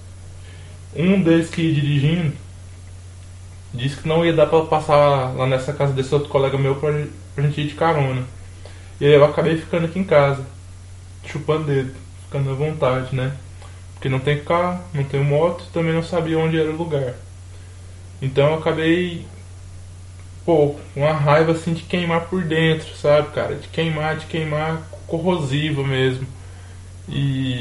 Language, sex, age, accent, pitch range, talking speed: Spanish, male, 20-39, Brazilian, 95-155 Hz, 160 wpm